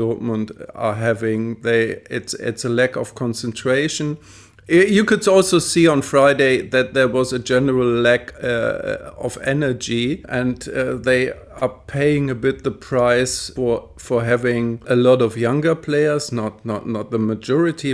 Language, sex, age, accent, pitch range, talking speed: English, male, 50-69, German, 115-130 Hz, 155 wpm